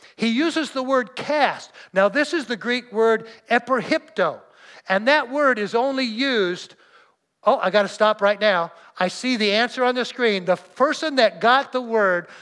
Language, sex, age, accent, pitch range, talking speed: English, male, 60-79, American, 195-255 Hz, 185 wpm